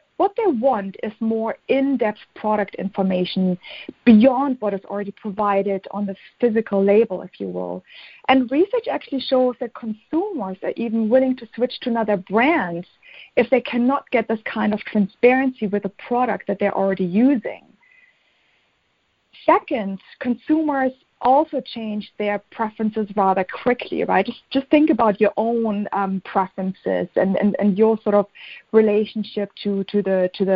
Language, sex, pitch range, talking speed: English, female, 205-255 Hz, 155 wpm